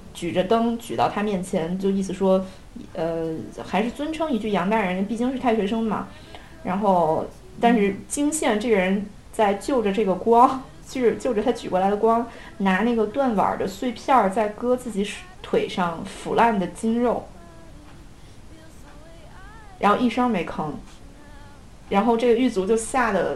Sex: female